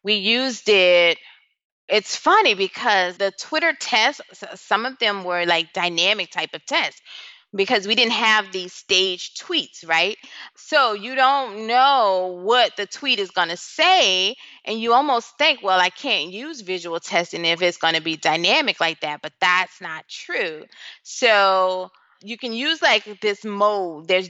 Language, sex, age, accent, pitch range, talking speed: English, female, 20-39, American, 175-235 Hz, 165 wpm